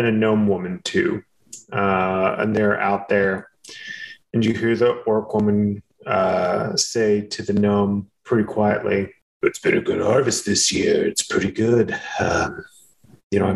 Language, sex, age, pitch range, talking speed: English, male, 30-49, 100-120 Hz, 165 wpm